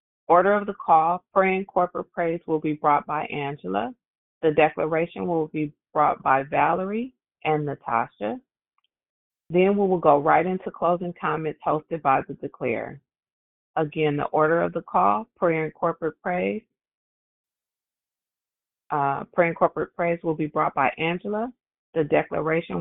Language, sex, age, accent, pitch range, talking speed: English, female, 30-49, American, 155-190 Hz, 145 wpm